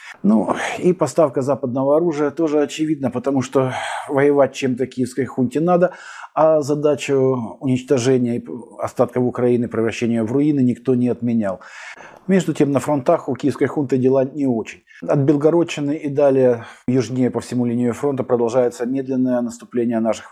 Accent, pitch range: native, 125-140 Hz